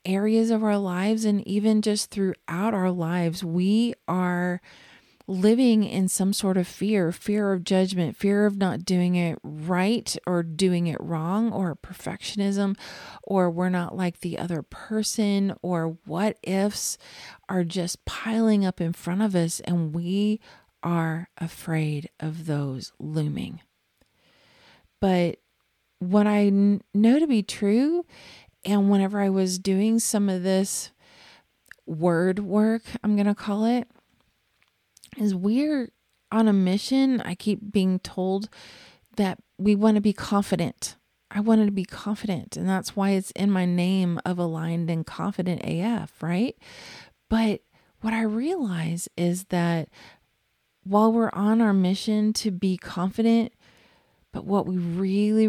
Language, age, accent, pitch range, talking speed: English, 40-59, American, 175-210 Hz, 145 wpm